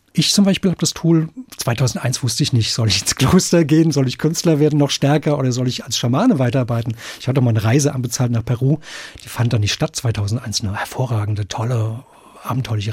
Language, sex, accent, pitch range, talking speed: German, male, German, 115-150 Hz, 210 wpm